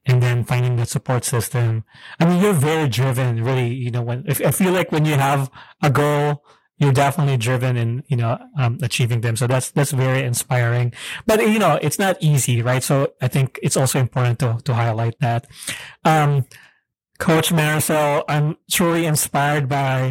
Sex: male